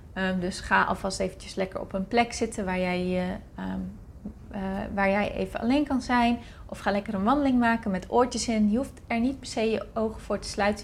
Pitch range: 195-230 Hz